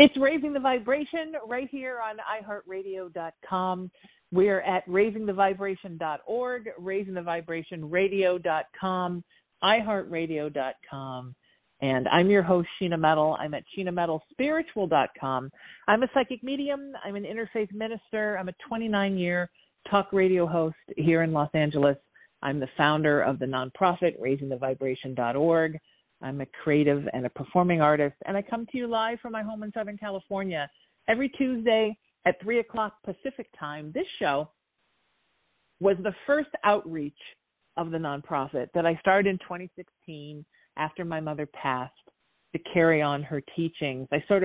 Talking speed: 130 wpm